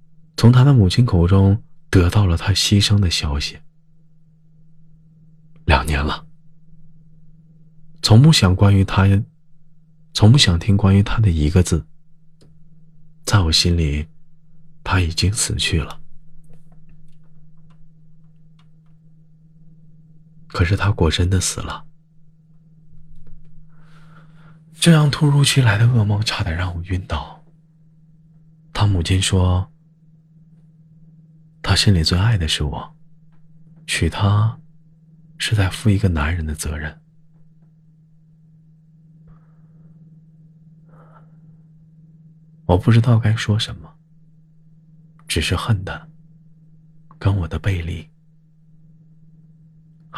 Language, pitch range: Chinese, 105-160 Hz